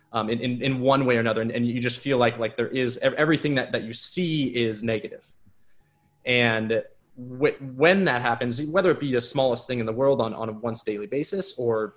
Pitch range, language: 110-135 Hz, English